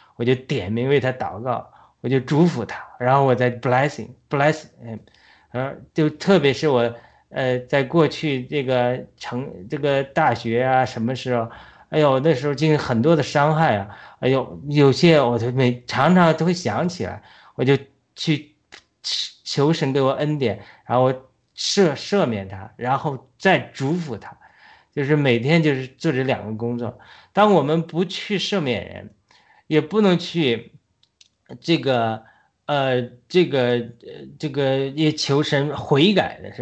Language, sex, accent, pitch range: Chinese, male, native, 125-160 Hz